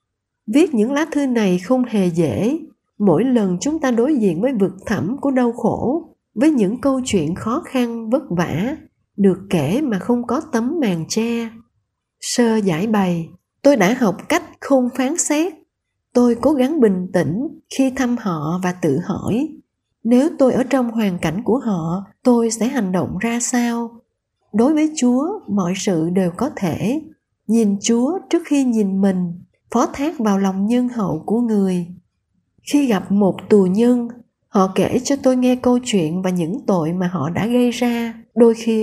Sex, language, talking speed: female, Vietnamese, 180 wpm